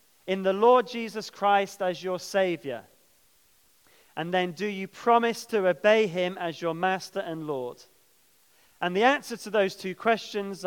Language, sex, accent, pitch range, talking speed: English, male, British, 165-225 Hz, 155 wpm